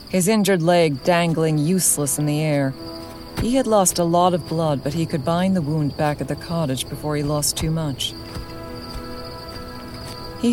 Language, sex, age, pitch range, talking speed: English, female, 40-59, 140-175 Hz, 175 wpm